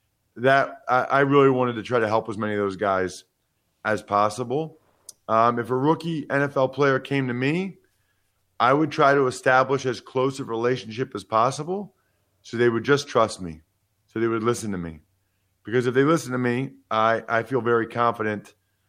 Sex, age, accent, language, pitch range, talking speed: male, 40-59, American, English, 105-140 Hz, 185 wpm